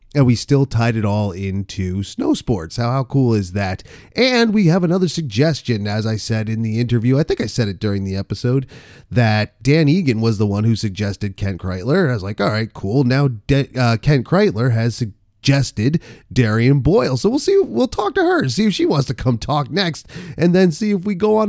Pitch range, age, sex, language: 110-145 Hz, 30-49, male, English